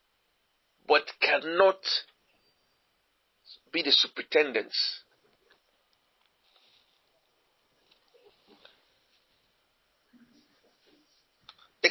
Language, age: English, 50-69